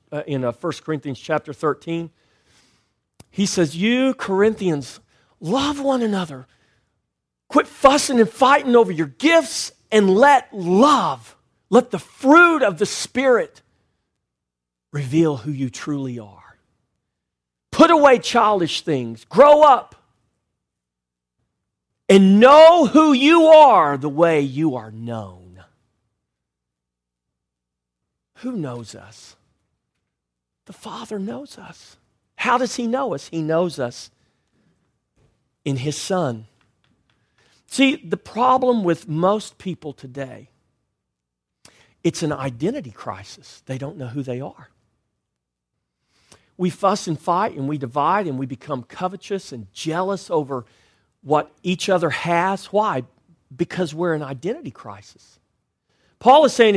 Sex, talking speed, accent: male, 120 wpm, American